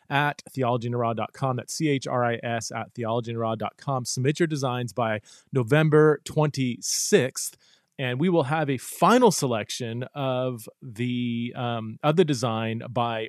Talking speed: 115 wpm